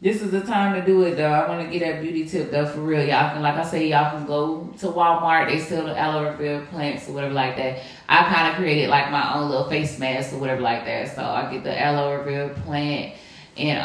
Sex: female